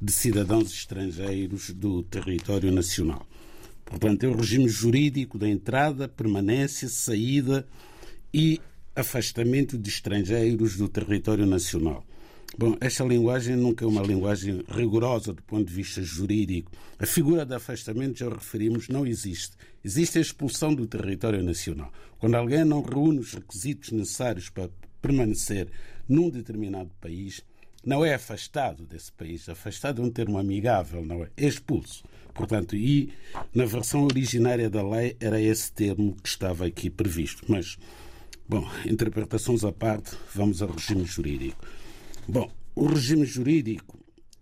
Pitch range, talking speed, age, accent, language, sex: 95-125 Hz, 140 wpm, 60-79, Brazilian, Portuguese, male